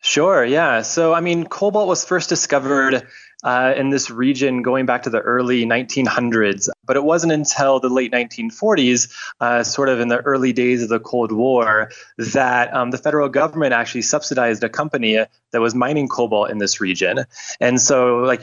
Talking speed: 180 wpm